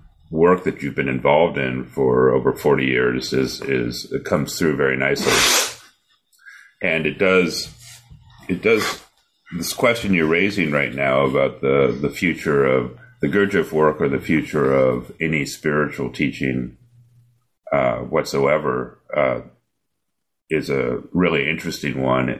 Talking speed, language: 135 wpm, English